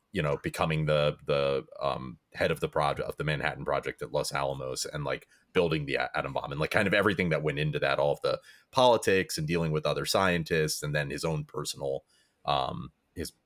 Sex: male